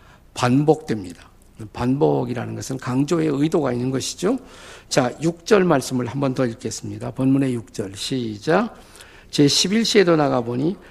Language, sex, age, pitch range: Korean, male, 50-69, 110-160 Hz